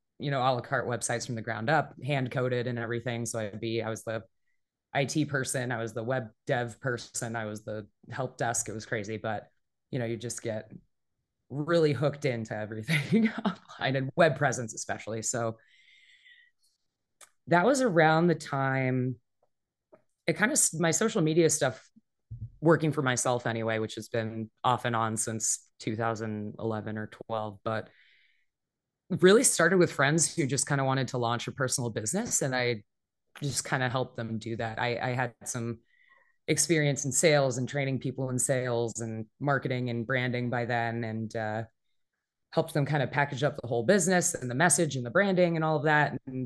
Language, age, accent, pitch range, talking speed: English, 20-39, American, 115-145 Hz, 185 wpm